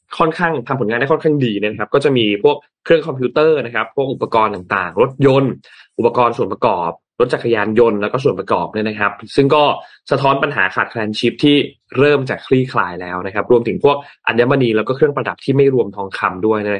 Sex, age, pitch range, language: male, 20-39, 105-145 Hz, Thai